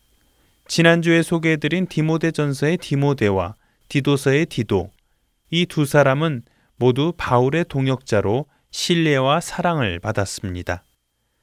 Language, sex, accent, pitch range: Korean, male, native, 105-160 Hz